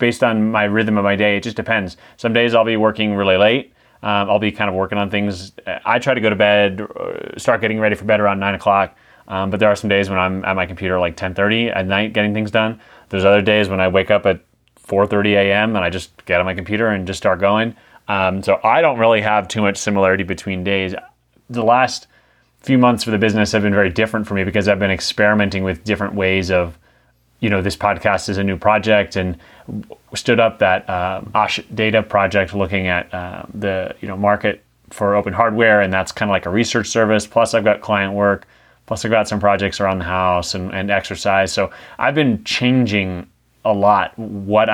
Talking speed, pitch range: 220 wpm, 95-105 Hz